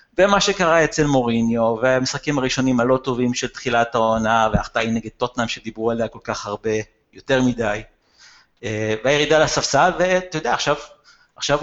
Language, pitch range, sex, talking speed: Hebrew, 115-145 Hz, male, 145 wpm